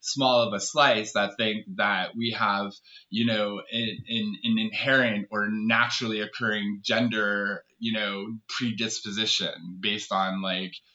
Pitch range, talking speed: 110-145 Hz, 125 wpm